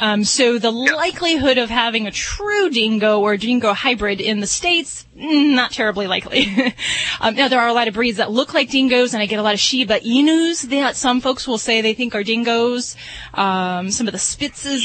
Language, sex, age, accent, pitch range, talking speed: English, female, 30-49, American, 205-255 Hz, 210 wpm